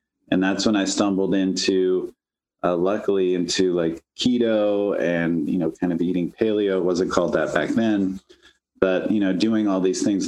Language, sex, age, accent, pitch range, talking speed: English, male, 30-49, American, 95-105 Hz, 180 wpm